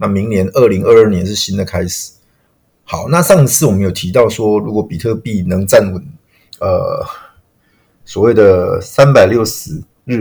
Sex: male